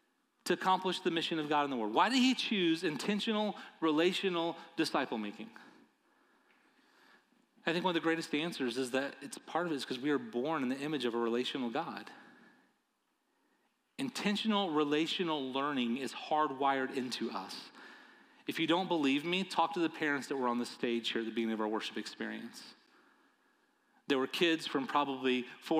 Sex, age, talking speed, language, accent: male, 30-49, 180 wpm, English, American